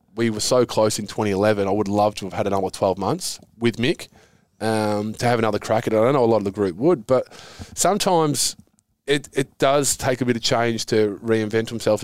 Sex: male